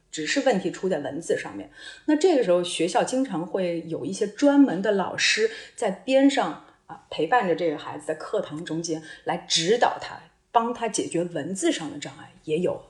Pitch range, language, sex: 170-280 Hz, Chinese, female